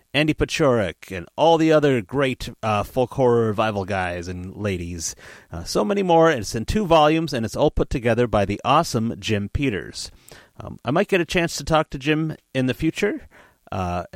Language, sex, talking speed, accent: English, male, 200 wpm, American